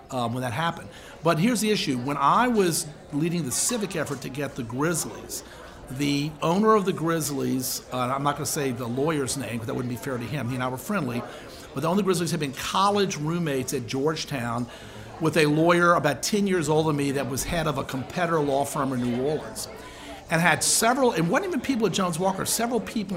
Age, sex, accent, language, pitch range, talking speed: 50-69, male, American, English, 140-185 Hz, 225 wpm